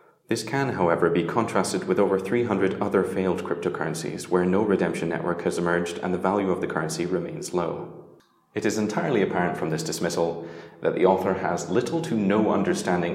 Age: 30-49